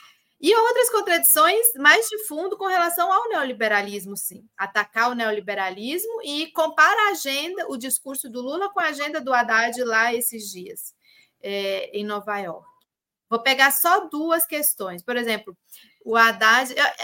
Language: Portuguese